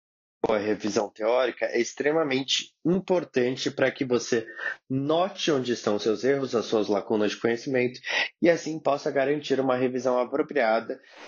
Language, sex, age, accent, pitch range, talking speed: Portuguese, male, 20-39, Brazilian, 125-150 Hz, 145 wpm